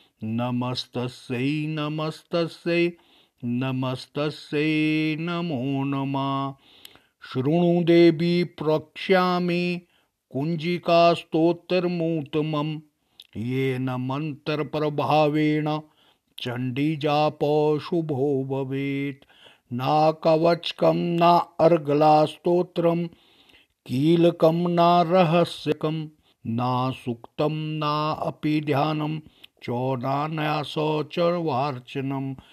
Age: 50-69